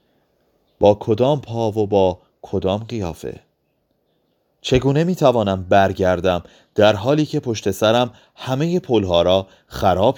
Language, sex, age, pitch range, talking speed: Persian, male, 30-49, 95-130 Hz, 120 wpm